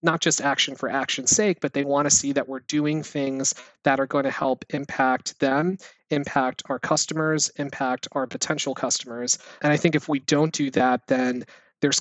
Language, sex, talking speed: English, male, 195 wpm